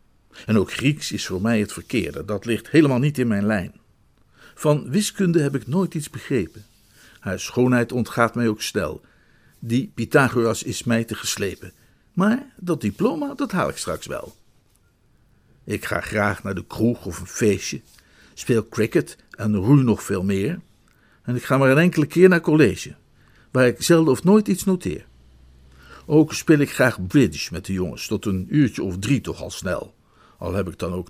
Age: 50-69